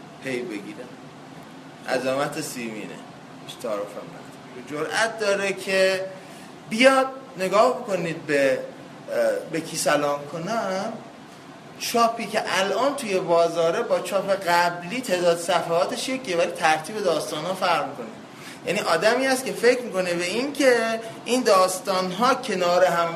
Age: 20-39